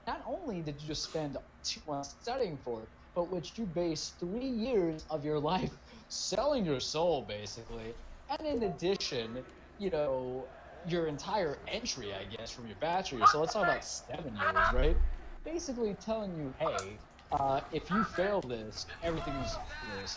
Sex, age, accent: male, 20-39, American